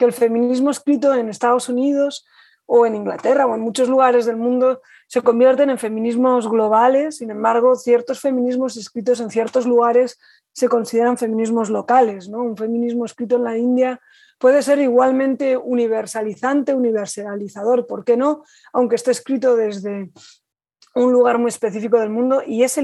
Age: 20-39